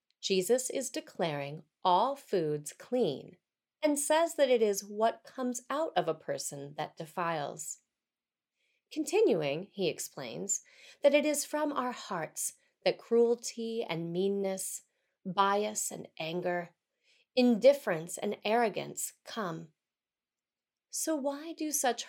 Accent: American